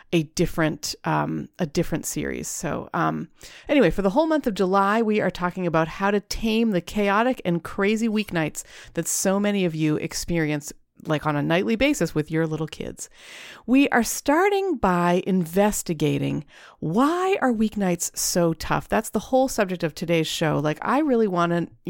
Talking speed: 175 wpm